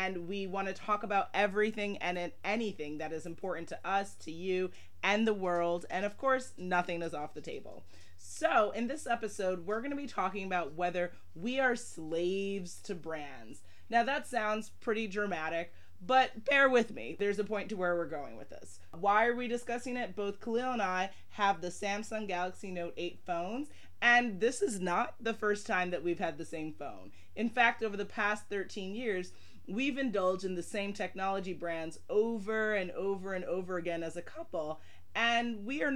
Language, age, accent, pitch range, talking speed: English, 30-49, American, 175-220 Hz, 195 wpm